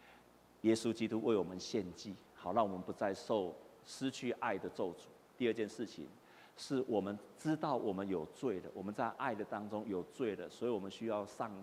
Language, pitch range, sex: Chinese, 125-175 Hz, male